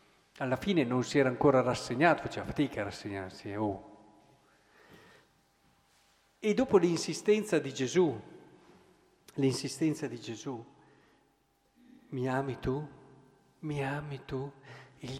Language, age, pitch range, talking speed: Italian, 50-69, 115-150 Hz, 105 wpm